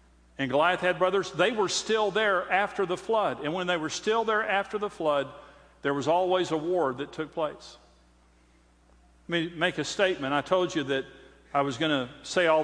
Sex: male